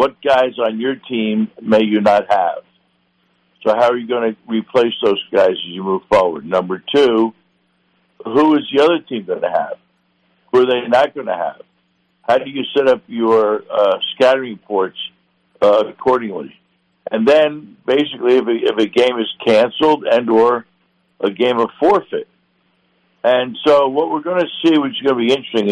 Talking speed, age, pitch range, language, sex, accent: 185 wpm, 60-79, 100-130 Hz, English, male, American